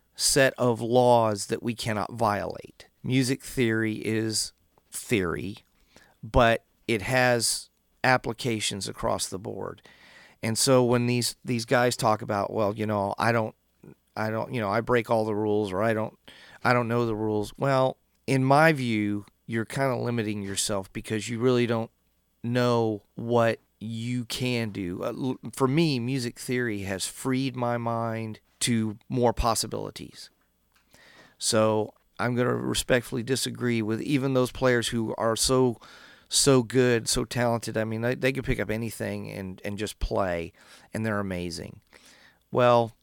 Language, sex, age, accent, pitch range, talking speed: English, male, 40-59, American, 110-125 Hz, 155 wpm